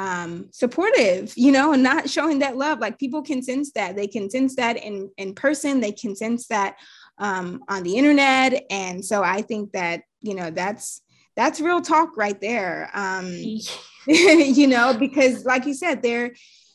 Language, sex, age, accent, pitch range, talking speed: English, female, 20-39, American, 205-270 Hz, 180 wpm